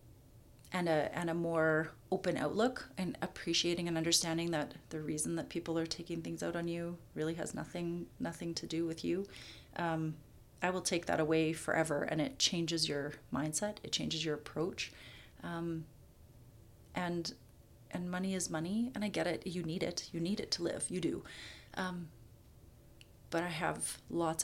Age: 30-49